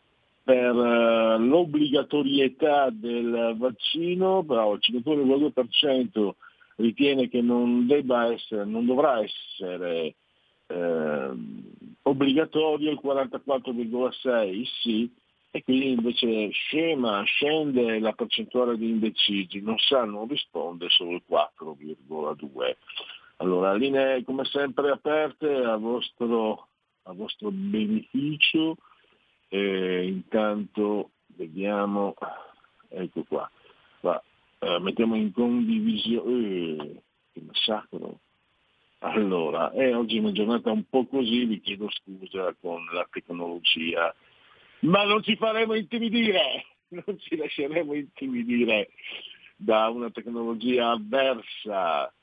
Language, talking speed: Italian, 100 wpm